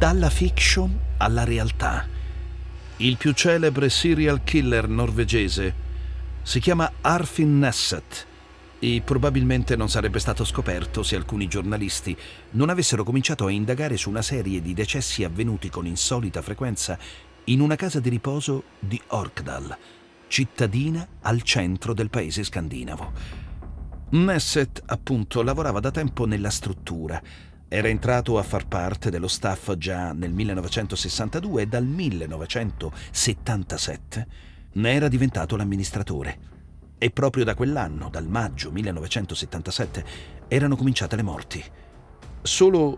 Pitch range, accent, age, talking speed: 85-125 Hz, native, 40-59, 120 wpm